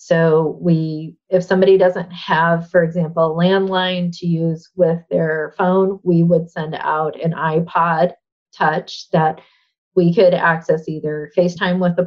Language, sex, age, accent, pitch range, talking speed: English, female, 30-49, American, 160-180 Hz, 150 wpm